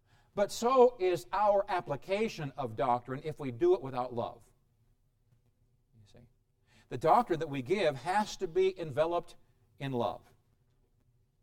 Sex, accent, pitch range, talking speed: male, American, 120-185 Hz, 130 wpm